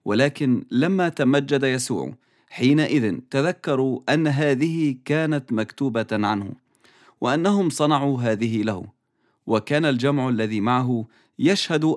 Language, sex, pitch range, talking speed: English, male, 115-150 Hz, 100 wpm